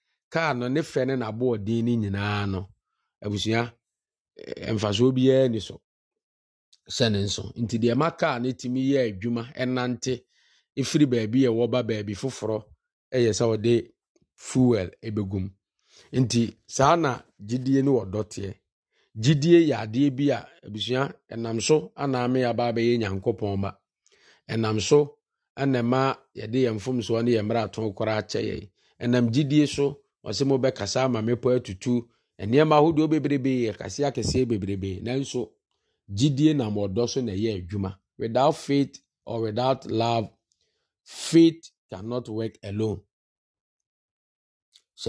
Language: English